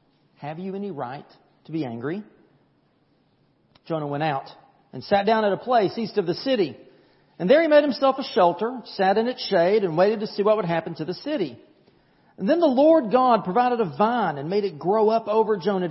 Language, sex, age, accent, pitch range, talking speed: English, male, 40-59, American, 170-235 Hz, 210 wpm